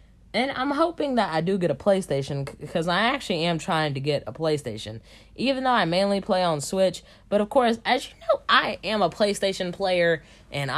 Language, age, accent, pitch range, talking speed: English, 10-29, American, 125-205 Hz, 205 wpm